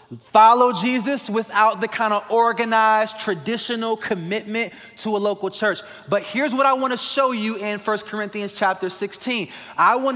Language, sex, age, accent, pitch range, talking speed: English, male, 20-39, American, 170-220 Hz, 165 wpm